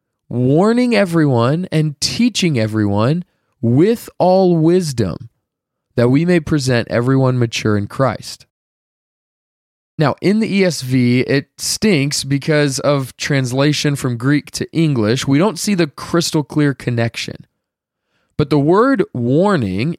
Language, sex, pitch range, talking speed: English, male, 125-180 Hz, 120 wpm